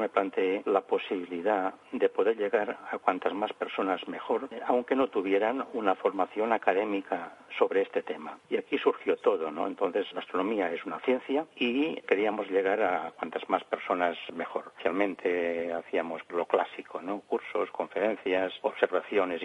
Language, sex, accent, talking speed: Spanish, male, Spanish, 150 wpm